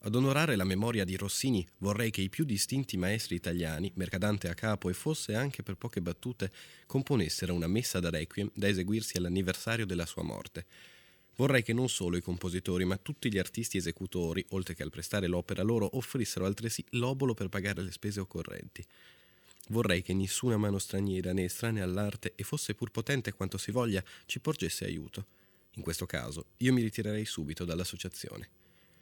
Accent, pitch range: native, 90-110 Hz